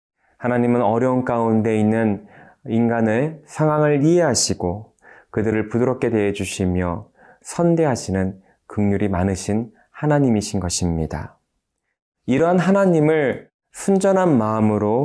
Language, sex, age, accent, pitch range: Korean, male, 20-39, native, 100-130 Hz